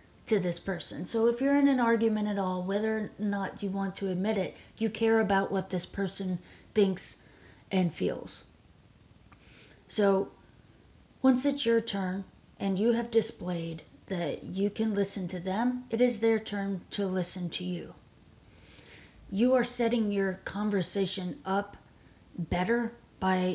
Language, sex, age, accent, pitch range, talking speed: English, female, 30-49, American, 175-210 Hz, 150 wpm